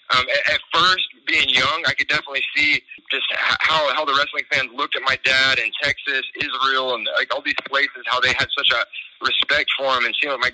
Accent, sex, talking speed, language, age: American, male, 220 wpm, English, 30-49